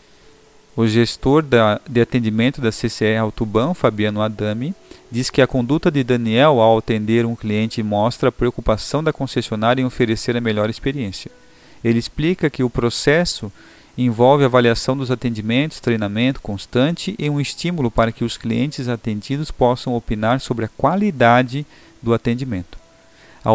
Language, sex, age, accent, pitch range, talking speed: Portuguese, male, 40-59, Brazilian, 110-130 Hz, 150 wpm